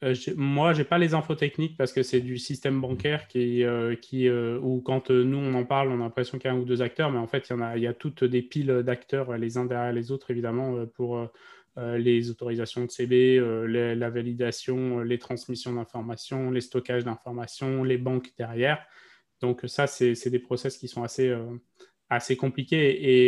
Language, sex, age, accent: French, male, 20-39, French